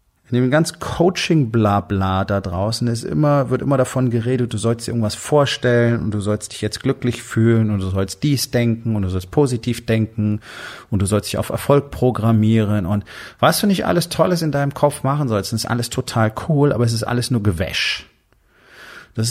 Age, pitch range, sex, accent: 30-49, 105-135 Hz, male, German